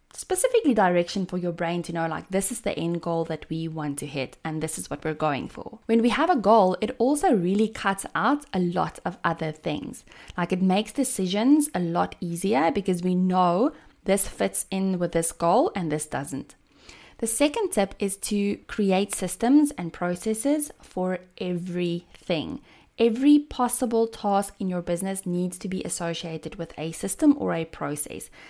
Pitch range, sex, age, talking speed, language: 170-225 Hz, female, 20-39, 180 wpm, English